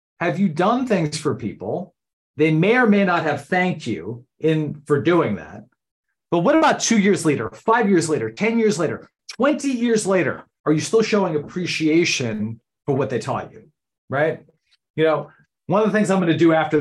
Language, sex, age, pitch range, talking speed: English, male, 40-59, 135-180 Hz, 195 wpm